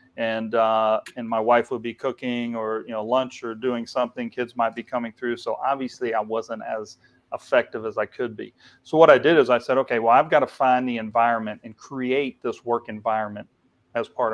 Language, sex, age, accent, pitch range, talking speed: English, male, 40-59, American, 110-125 Hz, 220 wpm